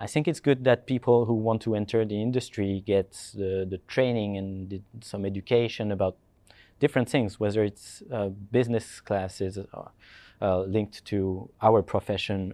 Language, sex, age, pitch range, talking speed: English, male, 20-39, 100-120 Hz, 165 wpm